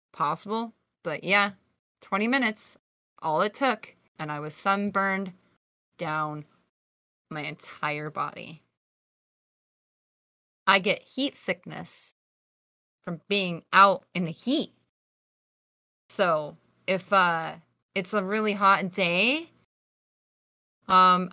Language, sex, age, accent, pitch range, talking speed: English, female, 20-39, American, 170-225 Hz, 100 wpm